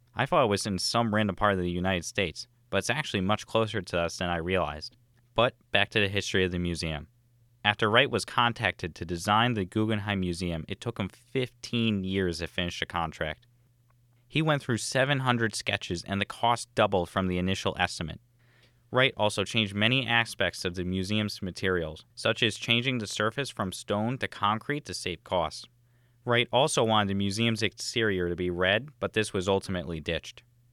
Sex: male